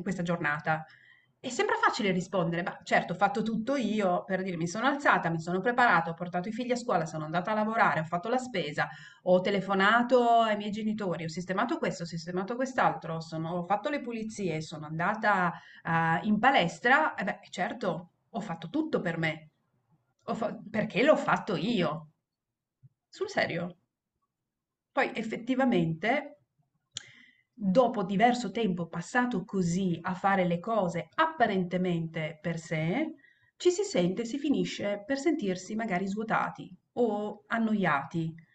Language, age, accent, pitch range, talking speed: Italian, 30-49, native, 170-225 Hz, 150 wpm